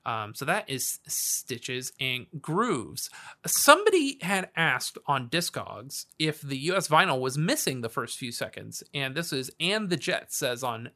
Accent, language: American, English